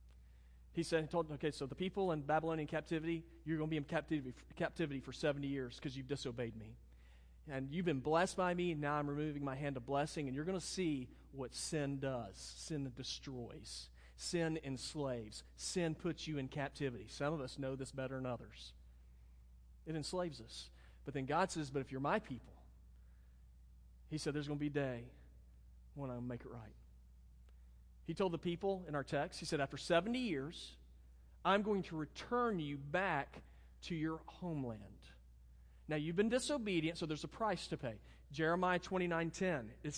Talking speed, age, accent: 180 wpm, 40-59, American